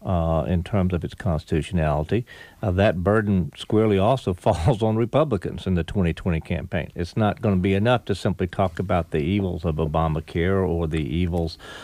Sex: male